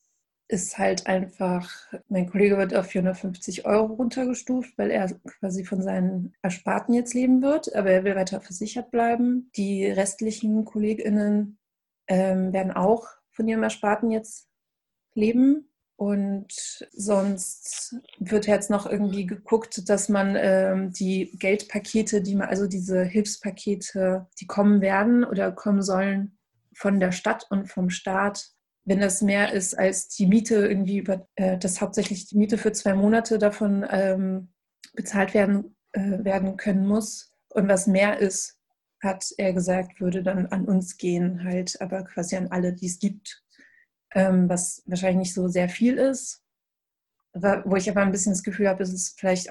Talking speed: 155 wpm